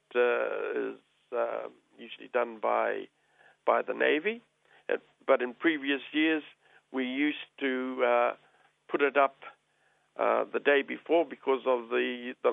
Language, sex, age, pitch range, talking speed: English, male, 60-79, 125-160 Hz, 135 wpm